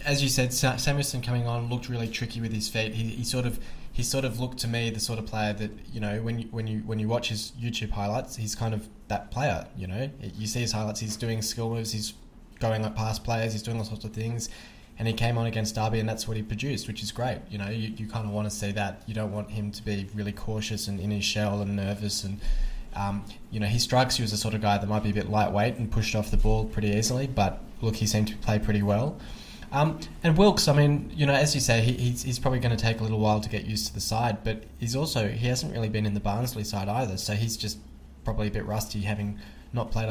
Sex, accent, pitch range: male, Australian, 105-115 Hz